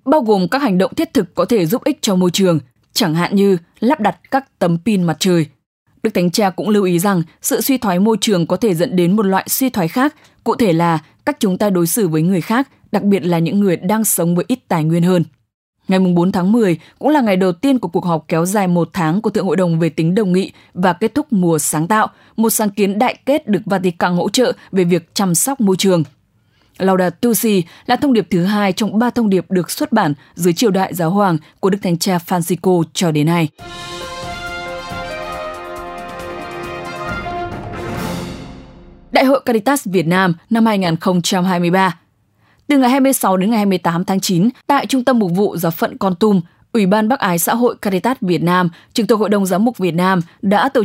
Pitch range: 170-220 Hz